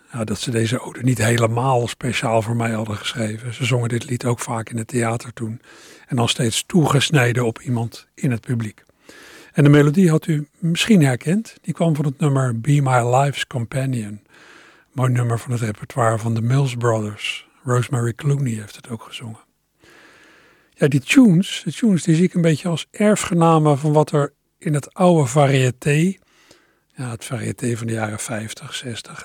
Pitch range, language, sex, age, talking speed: 120-155 Hz, Dutch, male, 60-79, 185 wpm